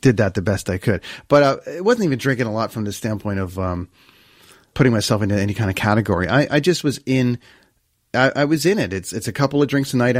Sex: male